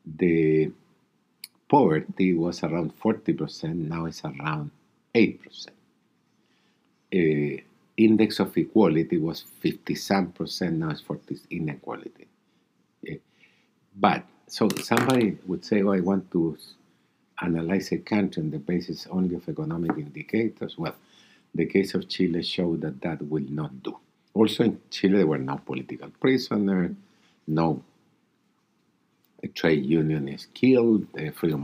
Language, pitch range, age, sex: English, 80-95 Hz, 50-69, male